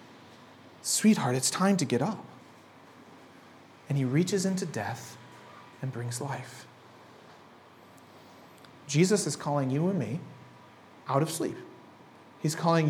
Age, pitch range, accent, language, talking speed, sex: 30-49, 150-210 Hz, American, English, 115 wpm, male